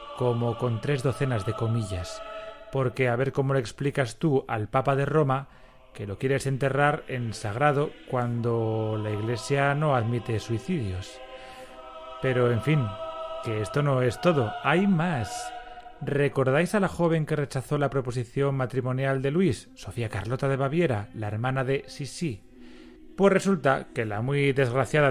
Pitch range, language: 120-150 Hz, Spanish